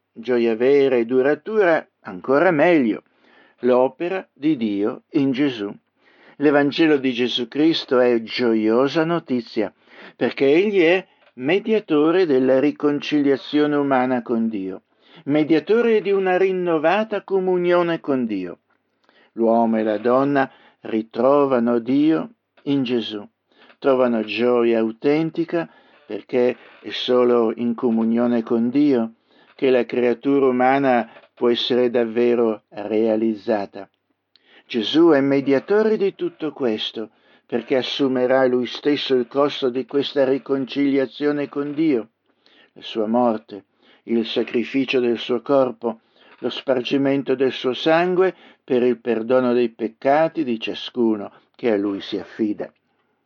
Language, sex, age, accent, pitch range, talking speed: Italian, male, 60-79, native, 115-145 Hz, 115 wpm